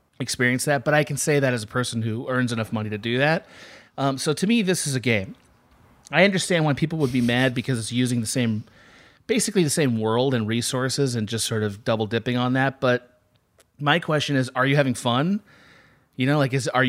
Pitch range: 115-145 Hz